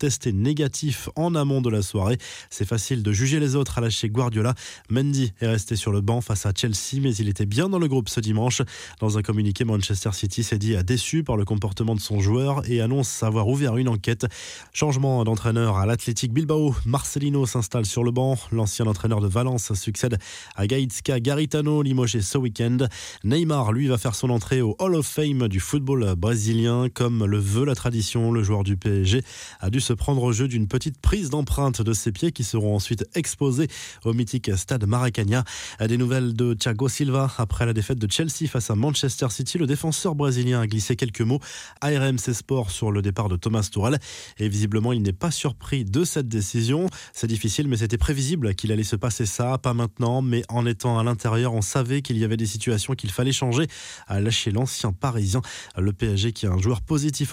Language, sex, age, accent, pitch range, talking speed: French, male, 20-39, French, 110-135 Hz, 205 wpm